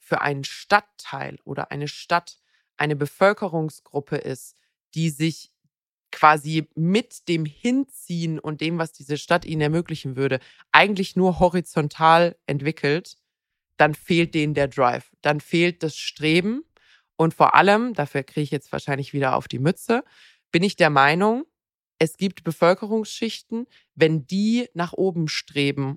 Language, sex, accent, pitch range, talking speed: German, female, German, 140-170 Hz, 140 wpm